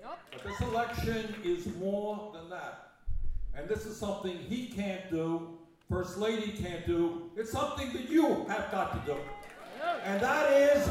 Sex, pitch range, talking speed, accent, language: male, 195-255 Hz, 160 wpm, American, English